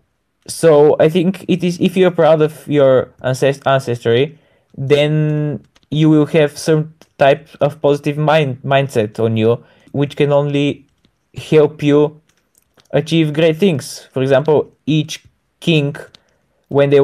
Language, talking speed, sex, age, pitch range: English, 130 wpm, male, 20-39, 125-145 Hz